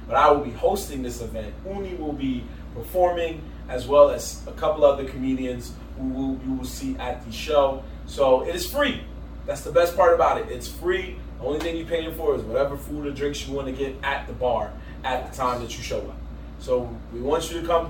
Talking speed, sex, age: 230 wpm, male, 20-39